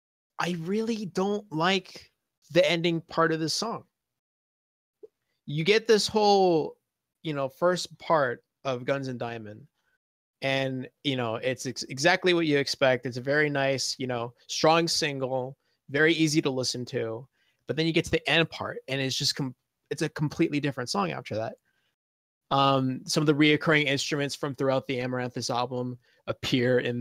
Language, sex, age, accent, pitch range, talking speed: English, male, 20-39, American, 125-160 Hz, 170 wpm